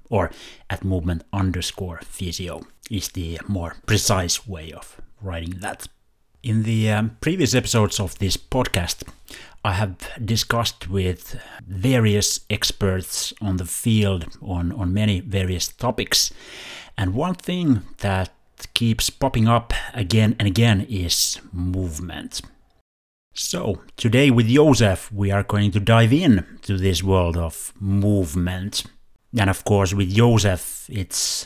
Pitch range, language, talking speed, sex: 95-110 Hz, Finnish, 130 wpm, male